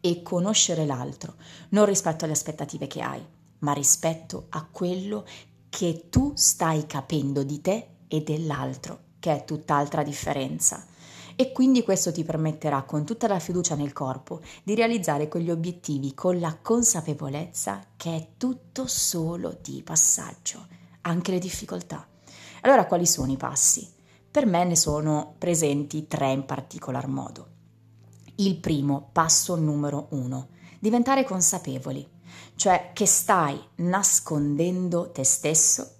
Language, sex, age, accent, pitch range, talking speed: Italian, female, 30-49, native, 145-175 Hz, 130 wpm